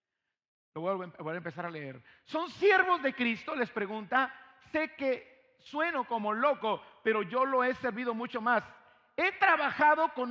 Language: Spanish